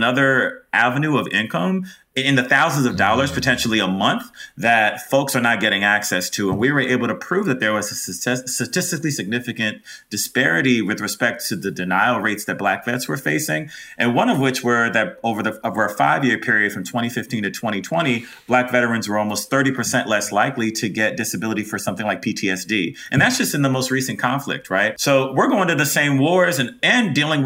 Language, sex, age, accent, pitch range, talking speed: English, male, 30-49, American, 105-130 Hz, 200 wpm